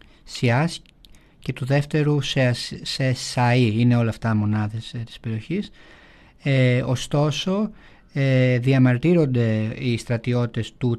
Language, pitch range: Greek, 110-145 Hz